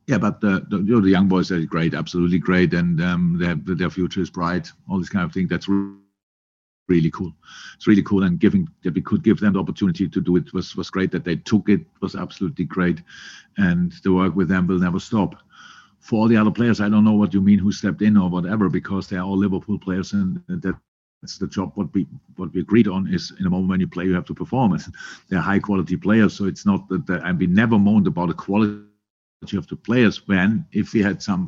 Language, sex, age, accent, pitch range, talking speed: English, male, 50-69, German, 95-110 Hz, 240 wpm